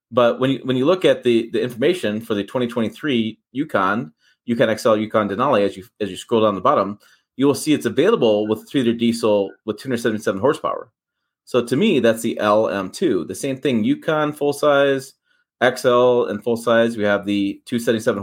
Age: 30-49